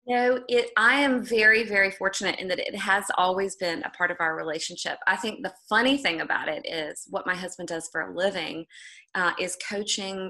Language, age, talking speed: English, 20-39, 205 wpm